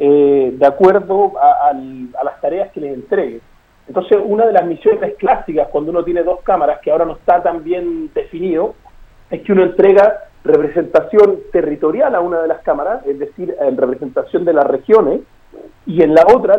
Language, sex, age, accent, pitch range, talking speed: Spanish, male, 40-59, Argentinian, 155-225 Hz, 175 wpm